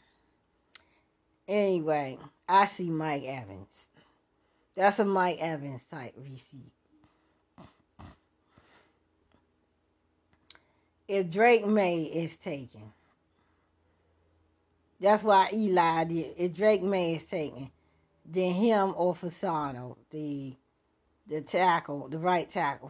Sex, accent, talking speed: female, American, 90 wpm